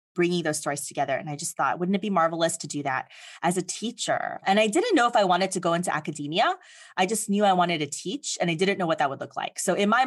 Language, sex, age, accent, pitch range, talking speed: English, female, 20-39, American, 160-200 Hz, 285 wpm